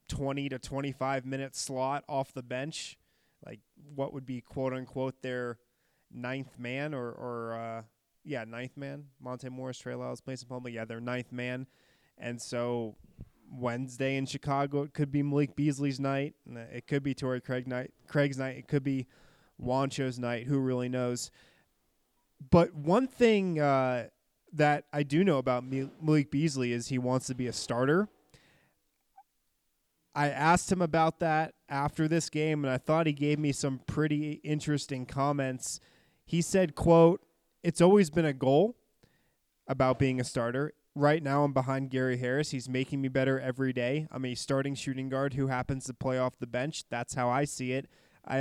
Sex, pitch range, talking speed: male, 125-145 Hz, 170 wpm